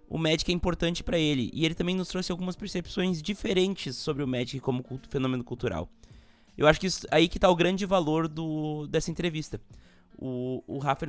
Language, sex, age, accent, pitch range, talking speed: Portuguese, male, 20-39, Brazilian, 130-170 Hz, 200 wpm